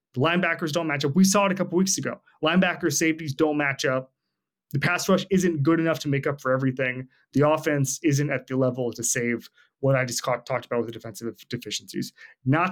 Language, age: English, 30-49